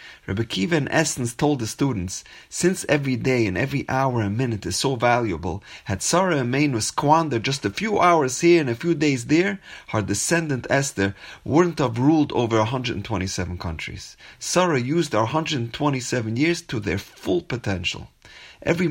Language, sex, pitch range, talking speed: English, male, 100-145 Hz, 165 wpm